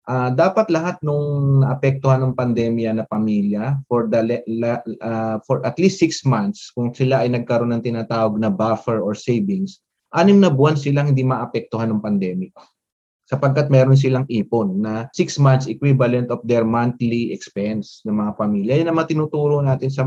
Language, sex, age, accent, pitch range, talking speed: English, male, 20-39, Filipino, 115-145 Hz, 175 wpm